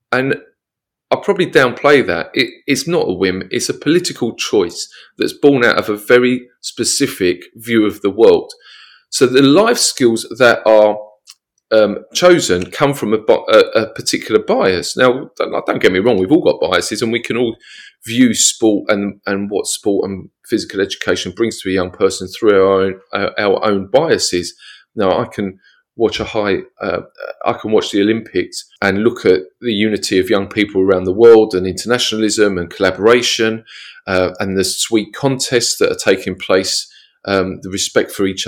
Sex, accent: male, British